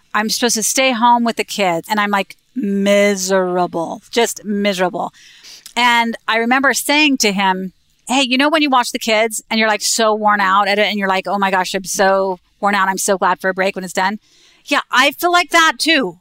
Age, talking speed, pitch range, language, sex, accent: 30-49, 225 wpm, 200-255 Hz, English, female, American